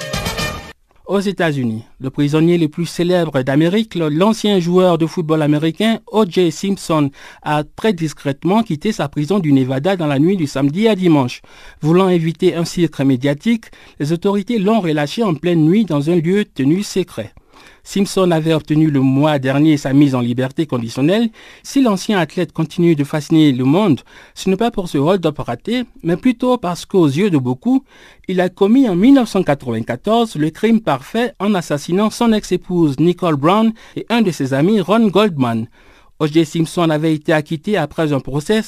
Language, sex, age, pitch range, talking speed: French, male, 60-79, 145-200 Hz, 170 wpm